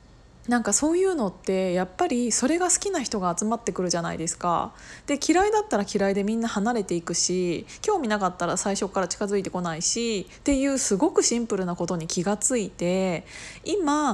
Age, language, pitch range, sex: 20-39, Japanese, 180-255 Hz, female